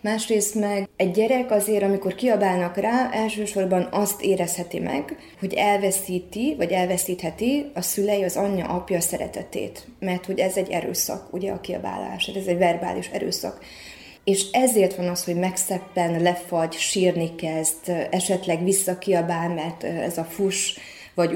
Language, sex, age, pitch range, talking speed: Hungarian, female, 20-39, 170-200 Hz, 140 wpm